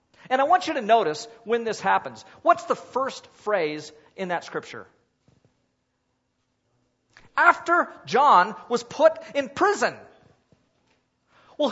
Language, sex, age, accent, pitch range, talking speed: English, male, 40-59, American, 195-320 Hz, 120 wpm